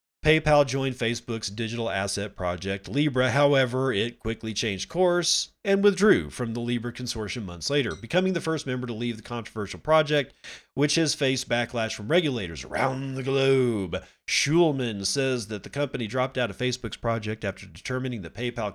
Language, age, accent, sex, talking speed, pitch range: English, 40-59, American, male, 165 wpm, 110-145 Hz